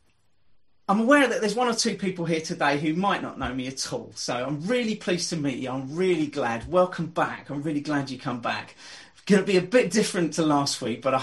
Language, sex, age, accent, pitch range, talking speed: English, male, 40-59, British, 135-190 Hz, 250 wpm